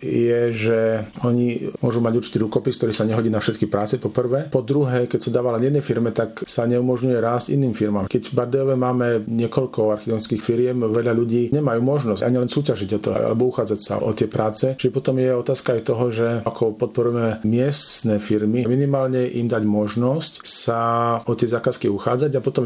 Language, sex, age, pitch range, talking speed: Slovak, male, 40-59, 110-125 Hz, 190 wpm